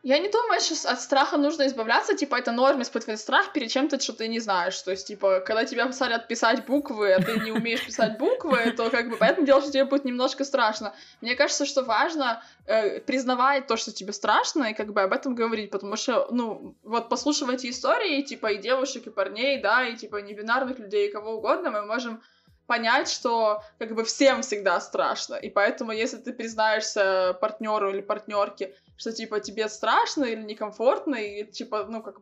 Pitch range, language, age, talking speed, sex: 215-260 Hz, Russian, 20-39, 195 wpm, female